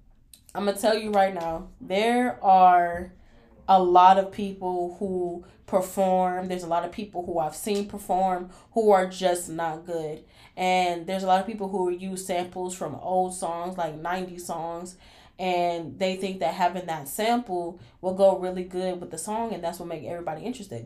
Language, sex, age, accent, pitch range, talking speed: English, female, 10-29, American, 185-265 Hz, 185 wpm